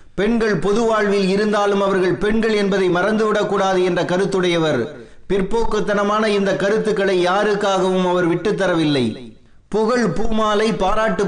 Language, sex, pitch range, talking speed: Tamil, male, 185-210 Hz, 100 wpm